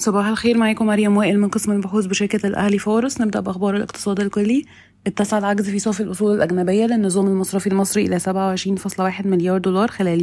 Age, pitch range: 20-39, 175-195 Hz